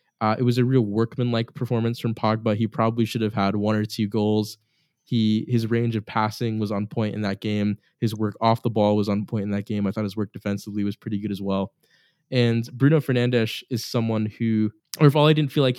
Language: English